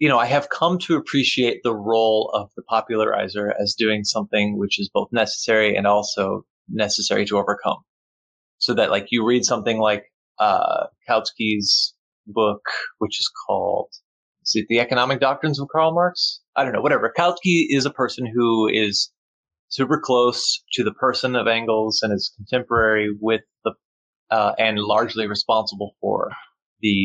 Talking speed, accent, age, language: 160 wpm, American, 20-39, English